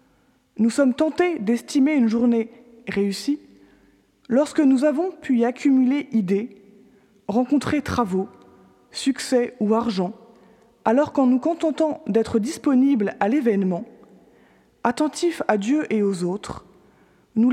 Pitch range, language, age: 220-280 Hz, French, 20-39